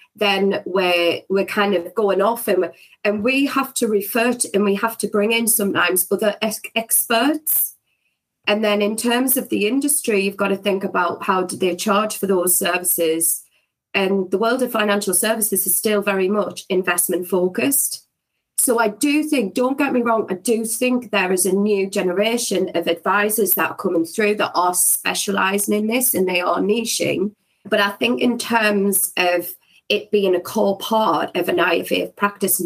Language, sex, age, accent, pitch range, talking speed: English, female, 30-49, British, 180-225 Hz, 185 wpm